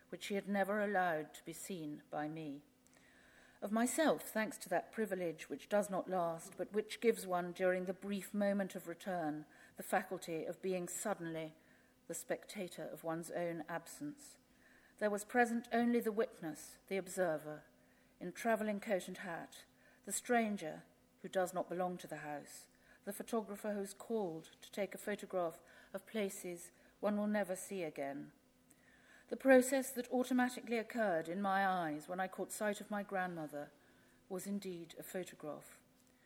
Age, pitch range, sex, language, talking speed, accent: 50-69, 170-225 Hz, female, English, 160 wpm, British